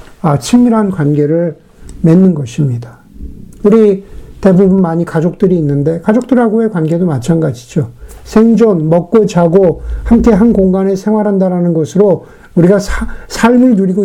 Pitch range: 165-225 Hz